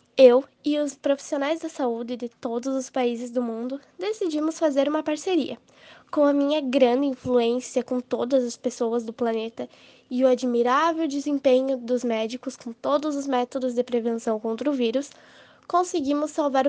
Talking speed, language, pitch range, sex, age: 160 wpm, Portuguese, 250-305 Hz, female, 10-29